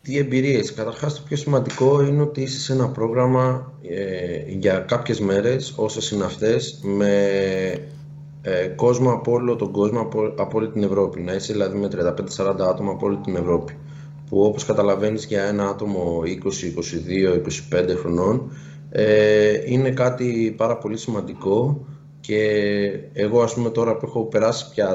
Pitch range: 100-145 Hz